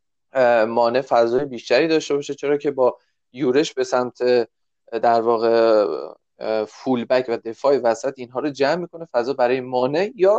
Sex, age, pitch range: male, 20-39, 120-150 Hz